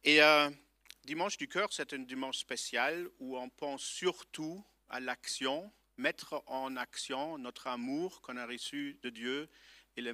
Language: French